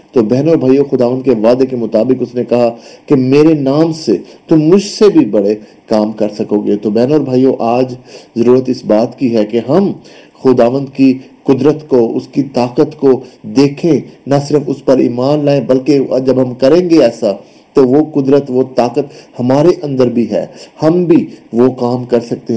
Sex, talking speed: male, 175 wpm